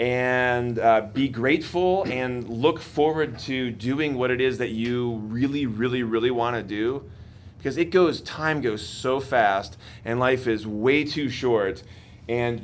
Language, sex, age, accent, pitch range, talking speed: English, male, 30-49, American, 115-155 Hz, 155 wpm